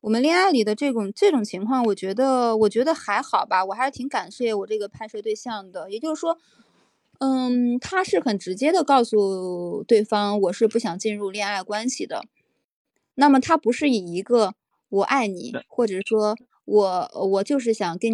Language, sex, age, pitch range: Chinese, female, 20-39, 190-260 Hz